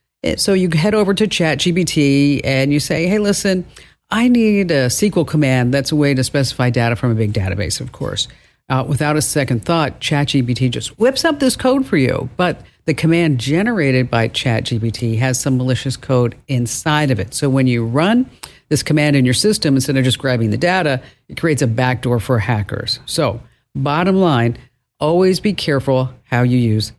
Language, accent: English, American